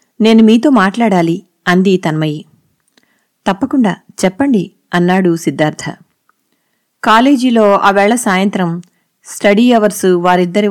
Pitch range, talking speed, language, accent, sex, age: 180-220 Hz, 85 wpm, Telugu, native, female, 30-49